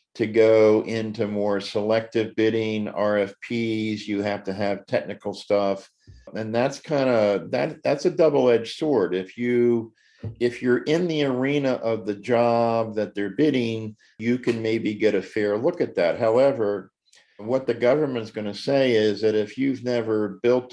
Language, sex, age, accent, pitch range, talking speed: English, male, 50-69, American, 100-120 Hz, 165 wpm